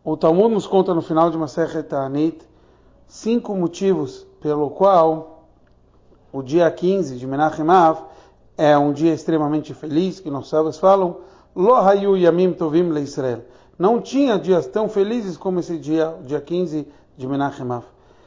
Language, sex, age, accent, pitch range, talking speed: Portuguese, male, 40-59, Brazilian, 145-185 Hz, 135 wpm